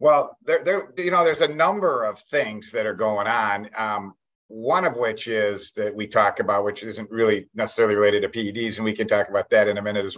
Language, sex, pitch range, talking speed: English, male, 110-170 Hz, 235 wpm